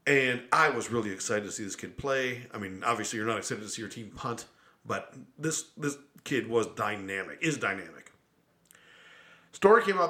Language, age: English, 40-59